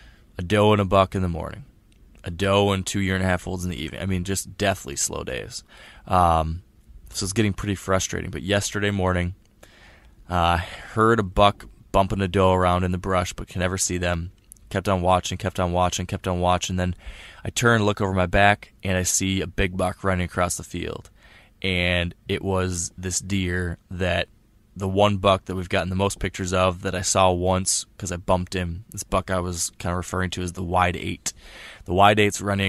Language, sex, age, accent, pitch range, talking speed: English, male, 20-39, American, 90-100 Hz, 215 wpm